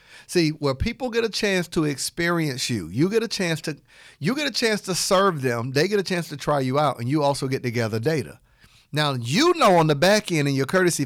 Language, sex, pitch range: English, male, 125-165 Hz